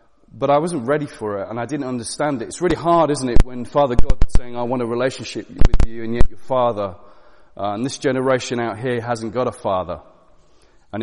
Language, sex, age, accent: English, male, 30-49, British